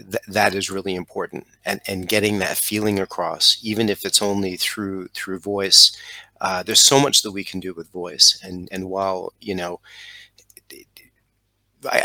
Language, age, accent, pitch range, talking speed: English, 30-49, American, 95-105 Hz, 170 wpm